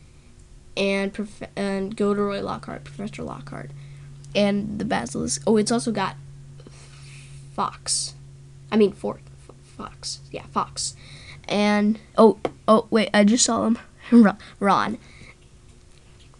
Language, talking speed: English, 110 wpm